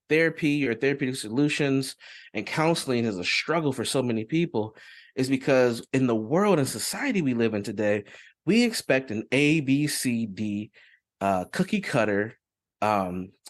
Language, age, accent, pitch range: English, 30-49, American, 110-145 Hz